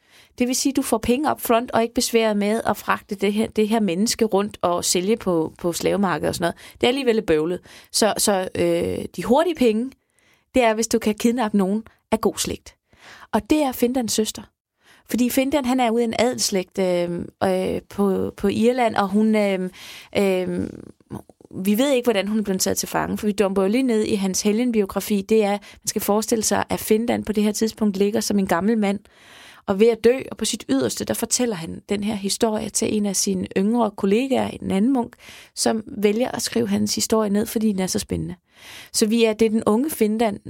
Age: 20-39